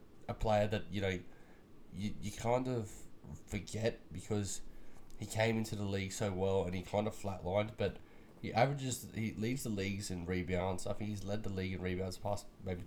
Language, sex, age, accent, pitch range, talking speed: English, male, 20-39, Australian, 90-110 Hz, 200 wpm